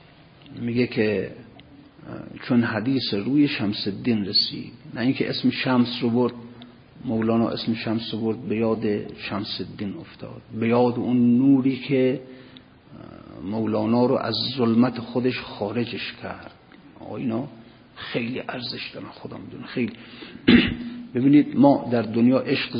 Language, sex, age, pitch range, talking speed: Persian, male, 50-69, 115-140 Hz, 130 wpm